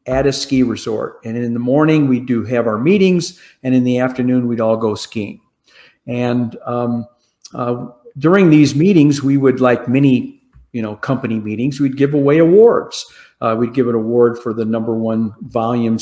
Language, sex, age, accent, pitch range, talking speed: English, male, 50-69, American, 120-145 Hz, 185 wpm